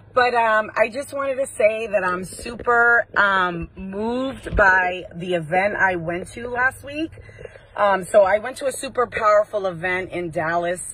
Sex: female